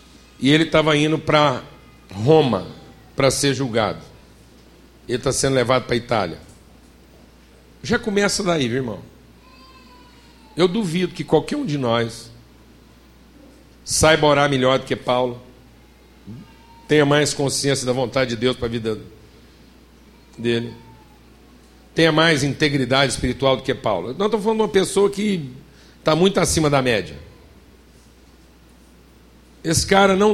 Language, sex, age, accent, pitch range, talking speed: Portuguese, male, 60-79, Brazilian, 125-175 Hz, 135 wpm